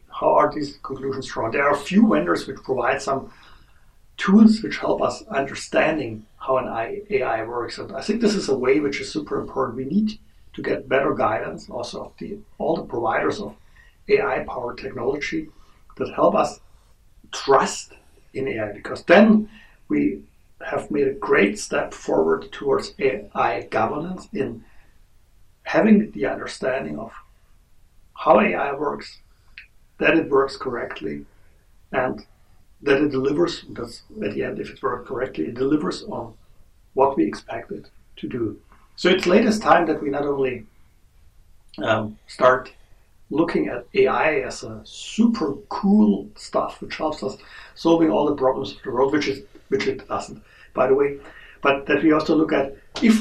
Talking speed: 160 wpm